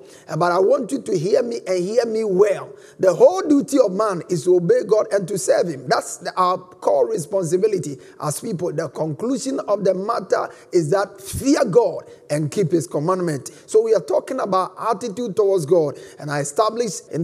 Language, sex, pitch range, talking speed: English, male, 175-245 Hz, 190 wpm